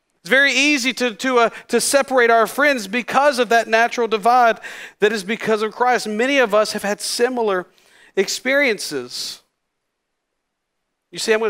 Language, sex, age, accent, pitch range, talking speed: English, male, 40-59, American, 180-235 Hz, 160 wpm